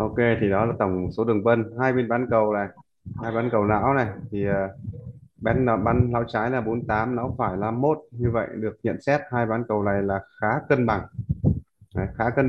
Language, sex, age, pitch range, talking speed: Vietnamese, male, 20-39, 105-120 Hz, 210 wpm